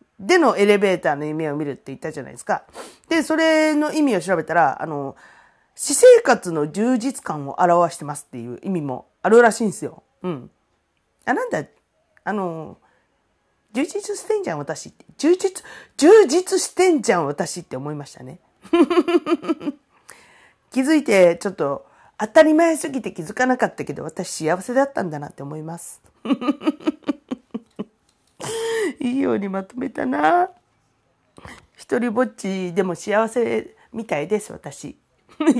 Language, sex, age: Japanese, female, 40-59